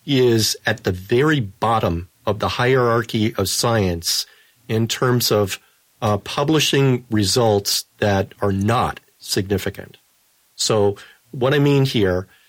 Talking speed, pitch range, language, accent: 120 wpm, 105-130 Hz, English, American